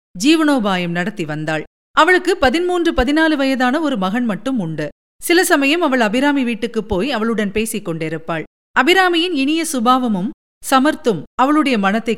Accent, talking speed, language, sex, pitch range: native, 130 wpm, Tamil, female, 215-300 Hz